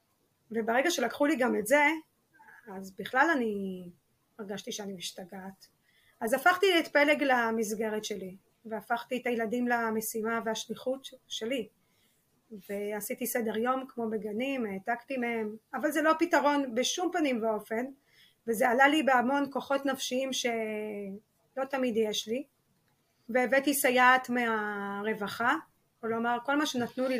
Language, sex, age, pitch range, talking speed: Hebrew, female, 20-39, 215-260 Hz, 125 wpm